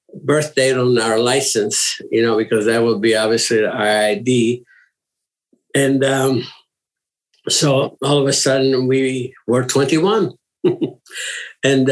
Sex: male